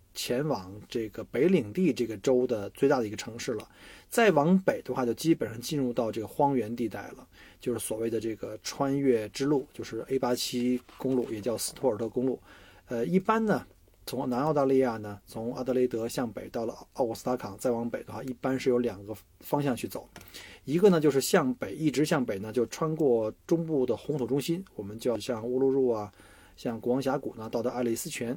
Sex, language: male, Chinese